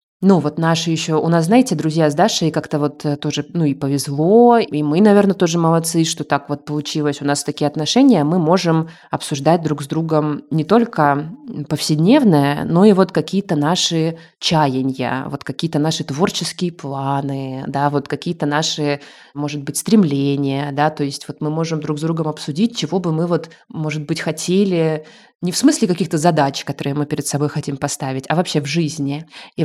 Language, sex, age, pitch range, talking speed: Russian, female, 20-39, 150-180 Hz, 180 wpm